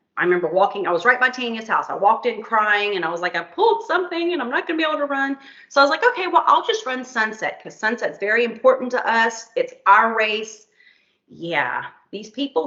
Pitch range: 185-255 Hz